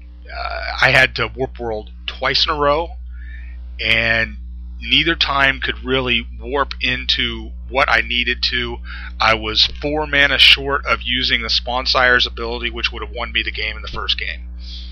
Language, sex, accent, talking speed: English, male, American, 175 wpm